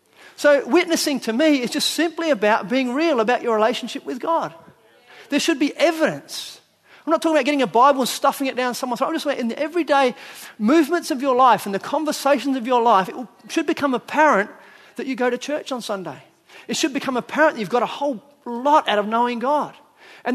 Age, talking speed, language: 30-49, 220 wpm, English